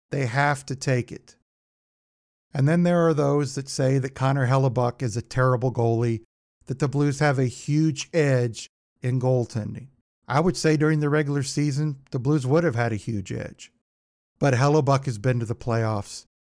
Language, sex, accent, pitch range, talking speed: English, male, American, 120-150 Hz, 180 wpm